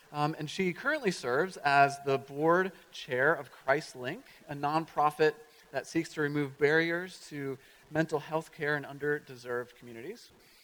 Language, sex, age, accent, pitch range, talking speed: English, male, 30-49, American, 125-165 Hz, 140 wpm